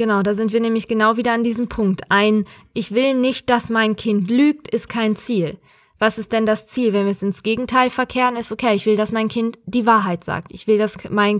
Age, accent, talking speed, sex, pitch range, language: 20-39, German, 240 wpm, female, 210-300 Hz, German